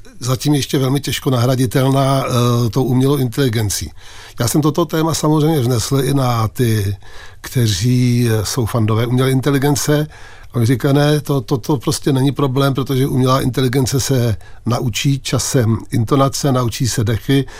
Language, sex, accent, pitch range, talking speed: Czech, male, native, 120-140 Hz, 145 wpm